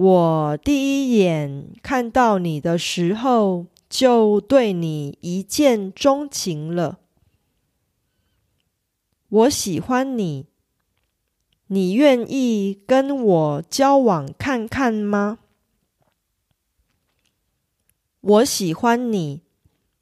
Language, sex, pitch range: Korean, female, 150-240 Hz